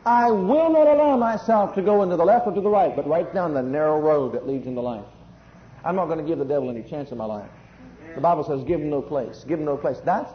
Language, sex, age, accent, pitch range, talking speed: English, male, 50-69, American, 135-180 Hz, 280 wpm